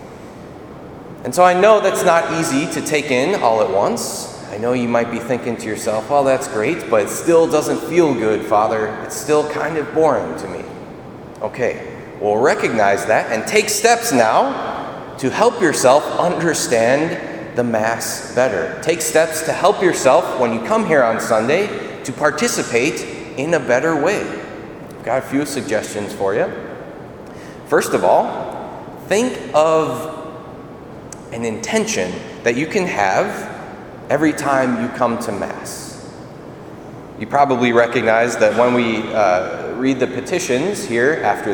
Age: 30-49